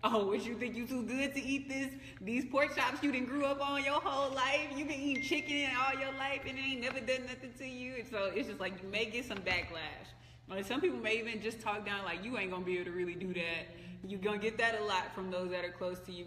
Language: English